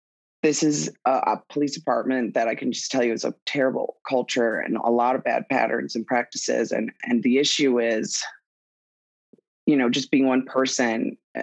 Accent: American